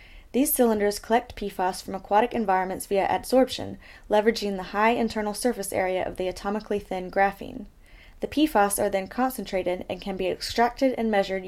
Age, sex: 10-29, female